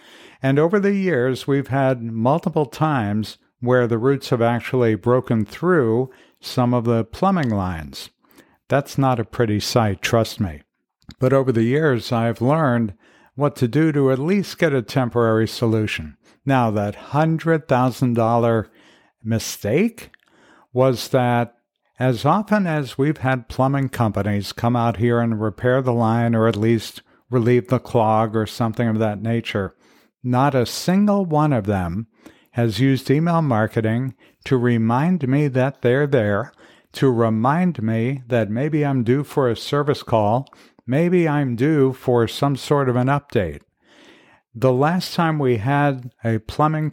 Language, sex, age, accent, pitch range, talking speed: English, male, 60-79, American, 115-140 Hz, 150 wpm